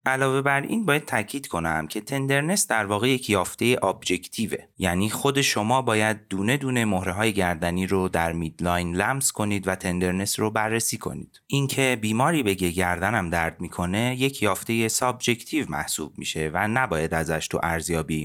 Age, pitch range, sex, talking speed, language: 30-49, 85-115 Hz, male, 160 wpm, Persian